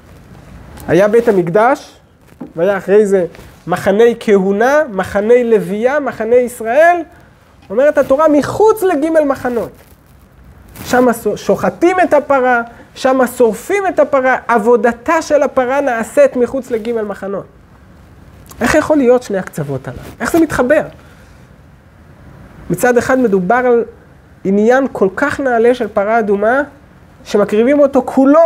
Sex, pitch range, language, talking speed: male, 230-290 Hz, Hebrew, 115 wpm